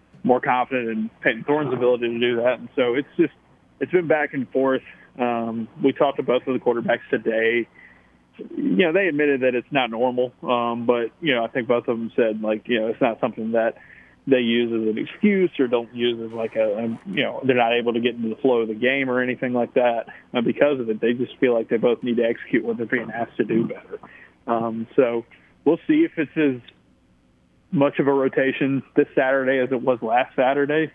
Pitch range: 115-130 Hz